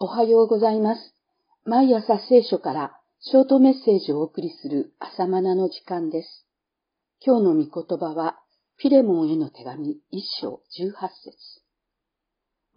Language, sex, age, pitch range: Japanese, female, 50-69, 180-245 Hz